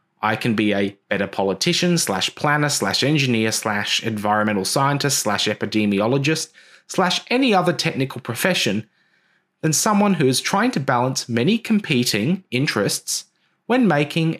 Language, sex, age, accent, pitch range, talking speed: English, male, 20-39, Australian, 120-185 Hz, 135 wpm